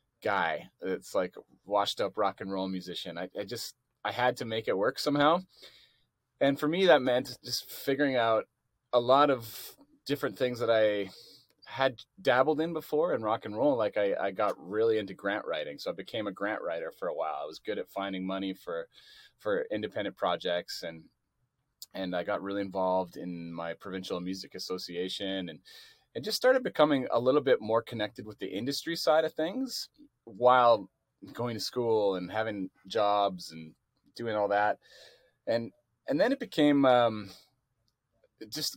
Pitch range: 95-145 Hz